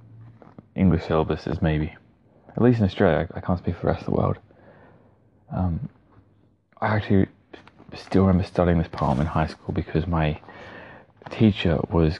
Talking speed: 160 wpm